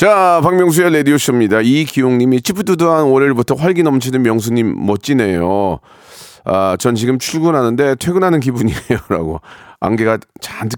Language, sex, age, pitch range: Korean, male, 40-59, 95-135 Hz